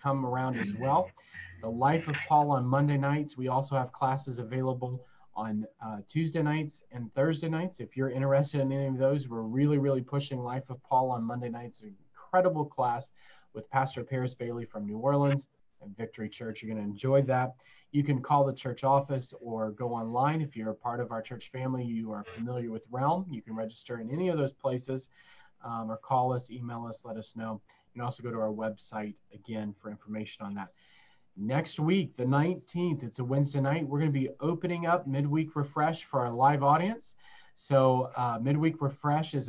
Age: 30-49